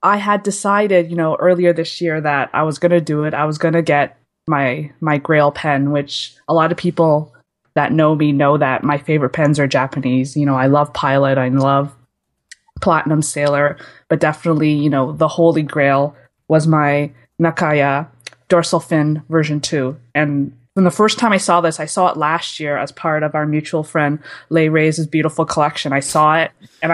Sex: female